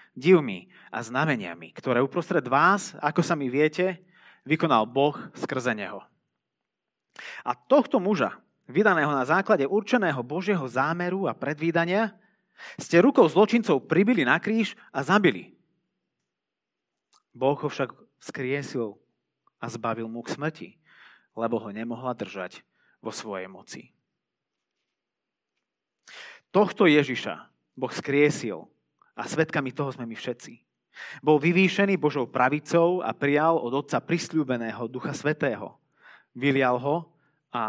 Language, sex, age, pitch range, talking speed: Slovak, male, 30-49, 125-185 Hz, 115 wpm